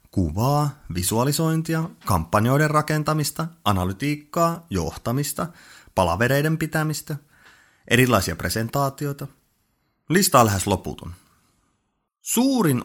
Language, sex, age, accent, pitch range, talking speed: Finnish, male, 30-49, native, 95-150 Hz, 65 wpm